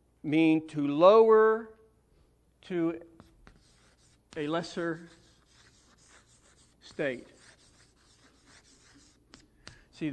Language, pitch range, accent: English, 150-205 Hz, American